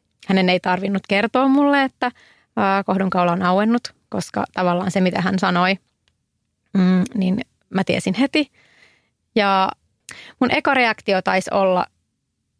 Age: 30-49